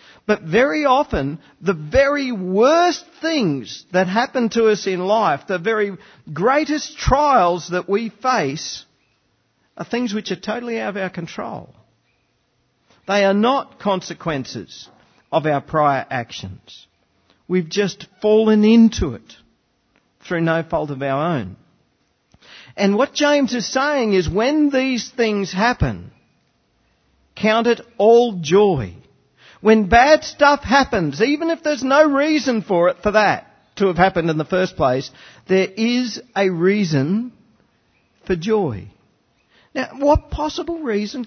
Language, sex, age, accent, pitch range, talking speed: English, male, 50-69, Australian, 165-240 Hz, 135 wpm